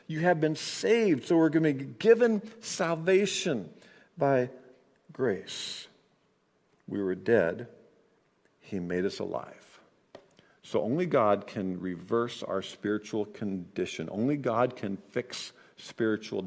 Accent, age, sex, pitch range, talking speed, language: American, 50-69, male, 100-155 Hz, 120 wpm, English